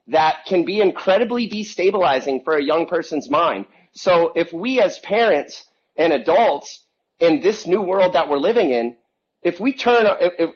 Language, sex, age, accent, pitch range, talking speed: English, male, 30-49, American, 150-220 Hz, 165 wpm